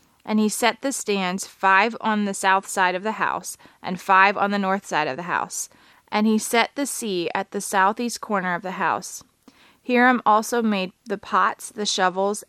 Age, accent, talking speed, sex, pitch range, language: 20-39, American, 195 wpm, female, 185-220 Hz, English